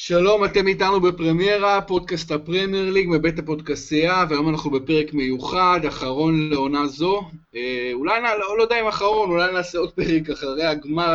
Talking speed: 155 wpm